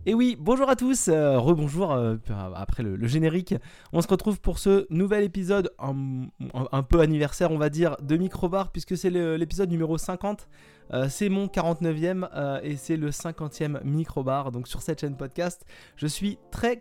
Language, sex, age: French, male, 20-39